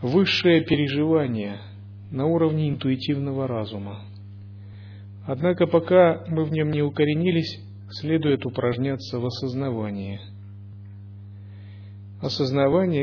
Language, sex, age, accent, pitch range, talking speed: Russian, male, 40-59, native, 100-145 Hz, 85 wpm